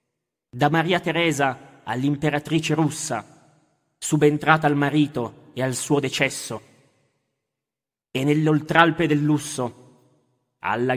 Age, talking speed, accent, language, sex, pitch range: 30-49, 95 wpm, native, Italian, male, 130-165 Hz